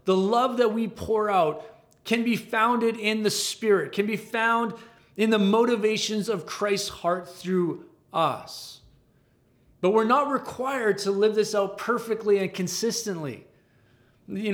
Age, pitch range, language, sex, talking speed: 30-49, 180-220 Hz, English, male, 145 wpm